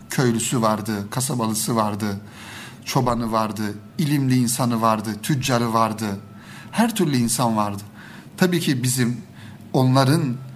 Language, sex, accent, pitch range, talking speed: Turkish, male, native, 115-145 Hz, 110 wpm